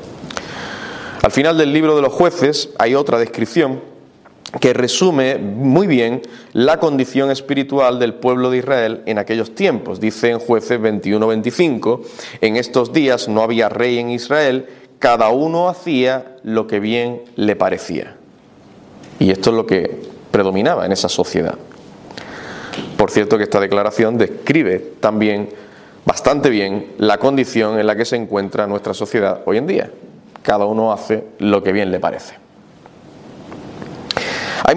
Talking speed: 145 wpm